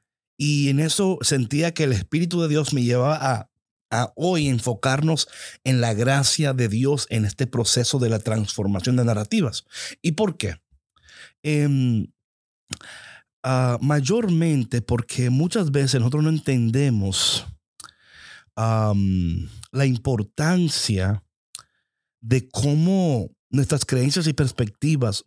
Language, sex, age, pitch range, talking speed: Spanish, male, 50-69, 120-150 Hz, 110 wpm